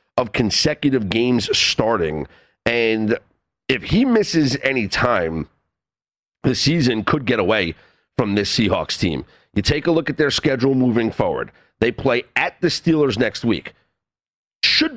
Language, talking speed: English, 145 wpm